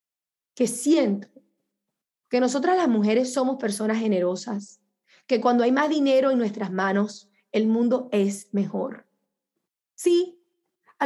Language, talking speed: English, 125 wpm